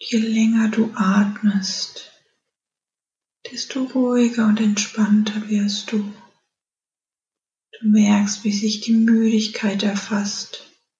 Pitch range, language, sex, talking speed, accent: 205-220 Hz, German, female, 95 wpm, German